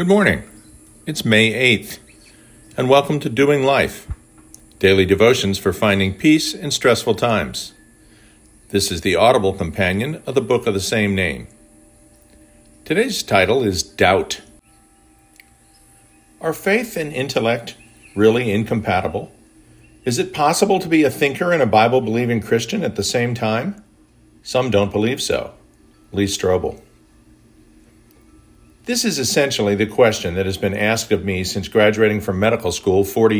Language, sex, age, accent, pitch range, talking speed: English, male, 50-69, American, 100-135 Hz, 140 wpm